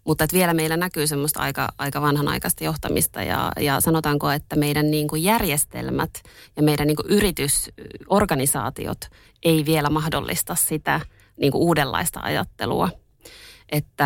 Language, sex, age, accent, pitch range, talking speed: Finnish, female, 20-39, native, 140-155 Hz, 120 wpm